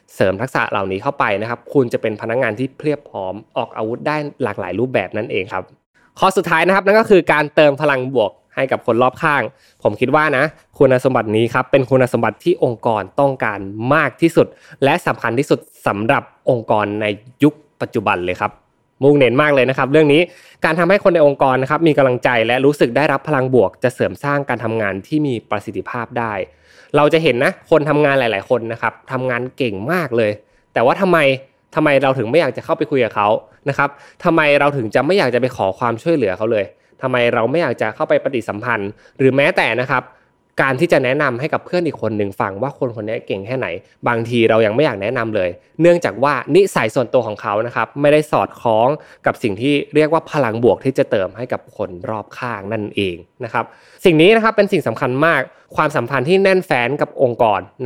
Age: 20-39